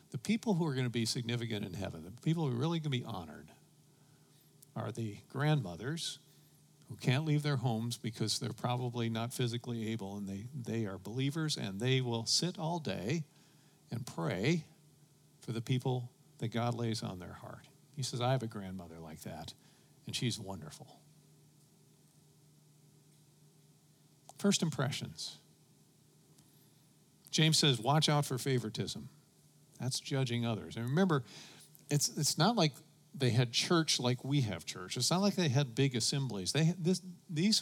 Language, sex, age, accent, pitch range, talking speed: English, male, 50-69, American, 120-155 Hz, 155 wpm